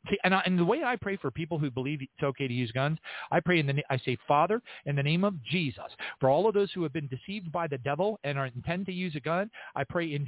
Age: 40-59